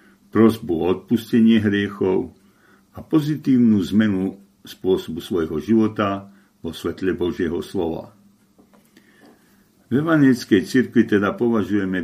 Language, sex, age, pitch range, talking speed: Slovak, male, 60-79, 95-115 Hz, 95 wpm